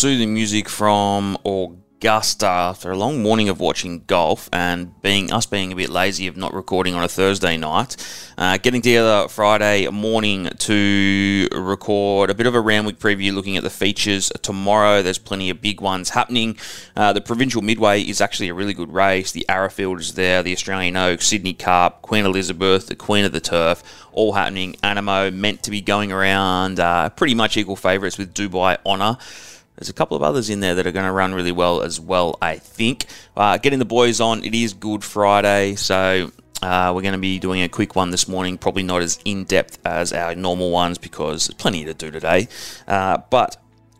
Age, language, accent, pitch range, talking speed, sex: 20-39, English, Australian, 90-105 Hz, 200 wpm, male